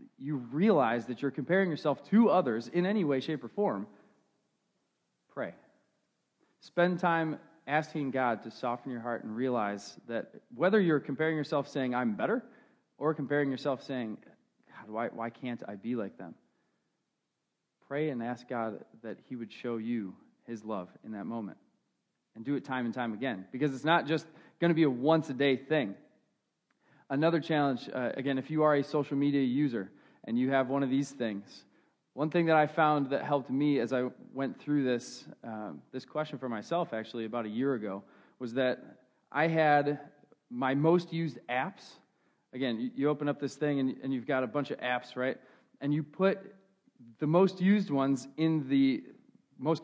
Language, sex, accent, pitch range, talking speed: English, male, American, 125-160 Hz, 180 wpm